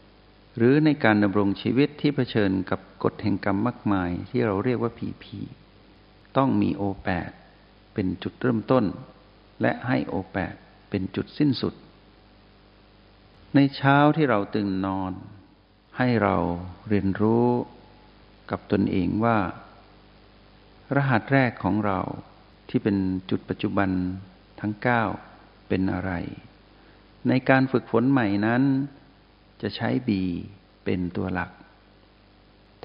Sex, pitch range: male, 95-115 Hz